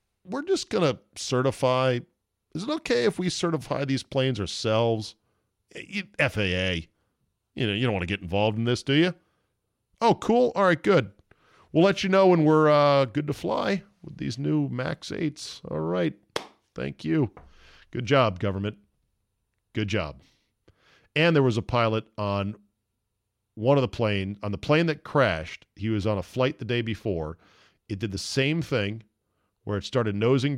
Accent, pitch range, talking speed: American, 100-145 Hz, 175 wpm